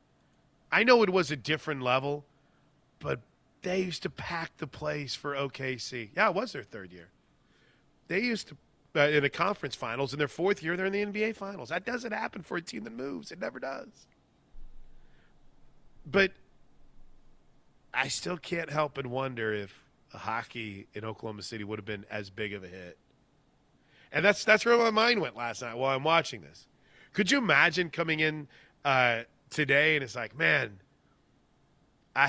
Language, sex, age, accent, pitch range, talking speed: English, male, 30-49, American, 115-170 Hz, 180 wpm